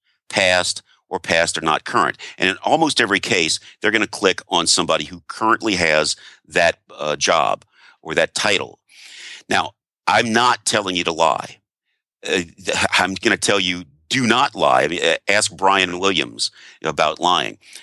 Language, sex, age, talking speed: English, male, 50-69, 165 wpm